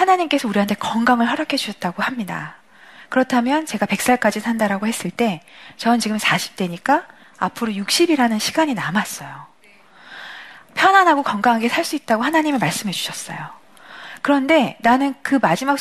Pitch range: 195-280 Hz